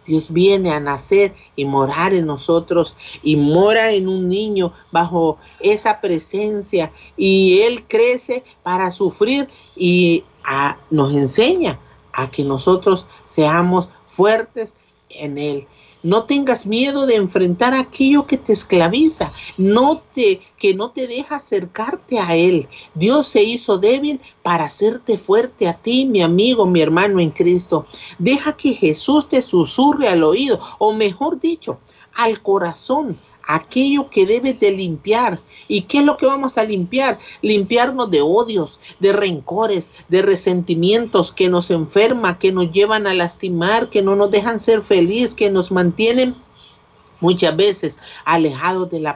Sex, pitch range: male, 170-230 Hz